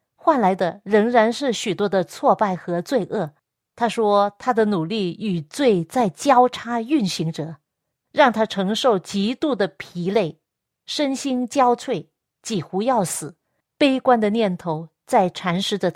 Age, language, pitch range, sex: 50-69, Chinese, 185-255 Hz, female